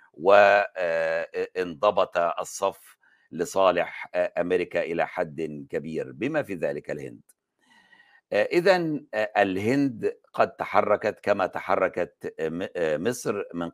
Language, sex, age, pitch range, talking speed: Arabic, male, 60-79, 85-110 Hz, 85 wpm